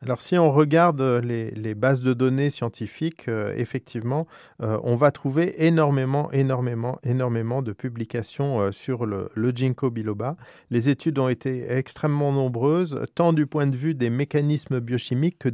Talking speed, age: 160 wpm, 40-59